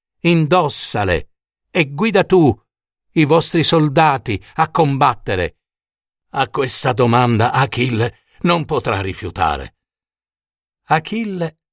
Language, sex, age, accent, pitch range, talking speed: Italian, male, 50-69, native, 95-140 Hz, 85 wpm